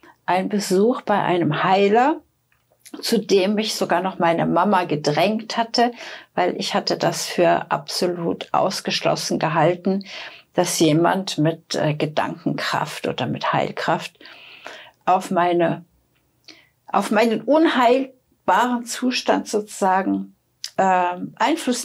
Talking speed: 105 wpm